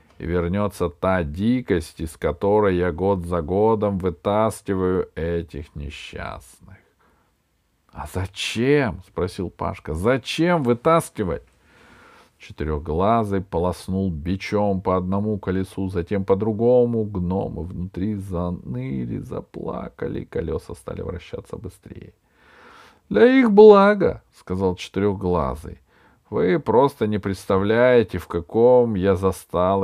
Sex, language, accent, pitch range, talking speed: male, Russian, native, 90-115 Hz, 105 wpm